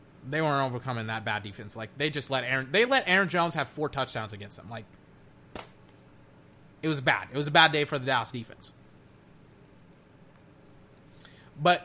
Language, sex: English, male